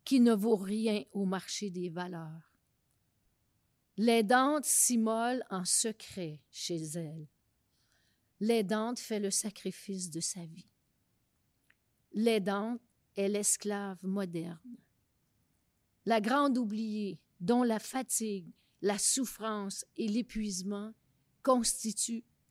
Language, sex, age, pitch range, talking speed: French, female, 40-59, 185-240 Hz, 95 wpm